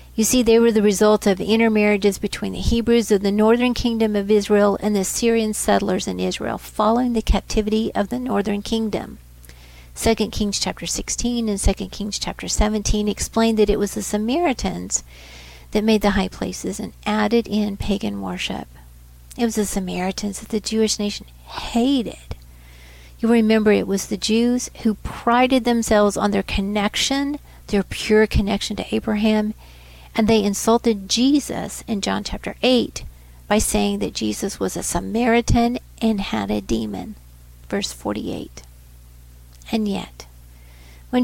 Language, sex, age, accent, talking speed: English, female, 50-69, American, 155 wpm